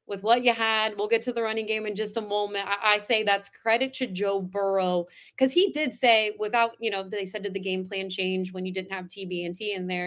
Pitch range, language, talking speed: 185-220 Hz, English, 270 wpm